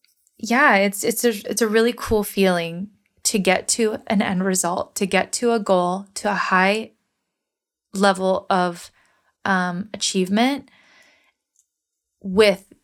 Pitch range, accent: 185-220 Hz, American